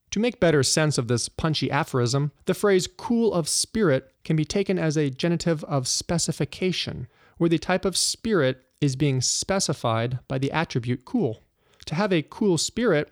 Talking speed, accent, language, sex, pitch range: 175 wpm, American, English, male, 135-190 Hz